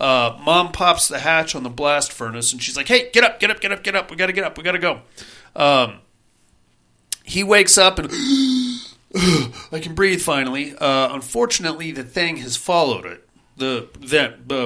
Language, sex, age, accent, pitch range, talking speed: English, male, 40-59, American, 135-190 Hz, 190 wpm